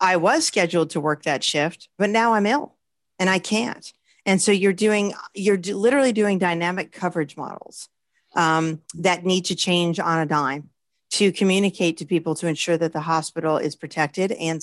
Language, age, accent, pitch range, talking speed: English, 40-59, American, 160-200 Hz, 185 wpm